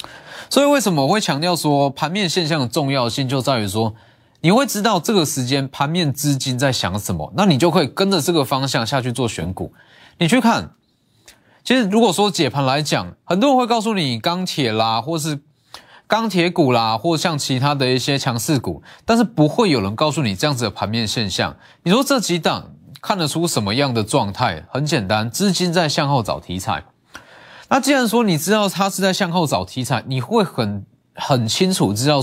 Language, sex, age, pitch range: Chinese, male, 20-39, 125-195 Hz